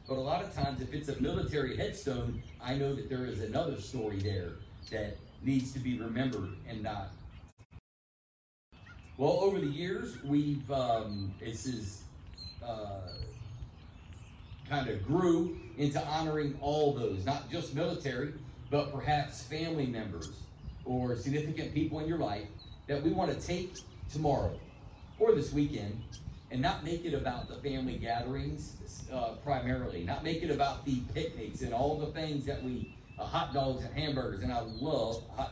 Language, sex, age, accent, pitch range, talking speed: English, male, 40-59, American, 105-145 Hz, 160 wpm